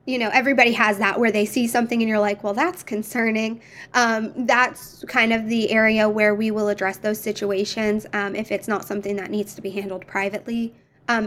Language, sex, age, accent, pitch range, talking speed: English, female, 20-39, American, 205-230 Hz, 210 wpm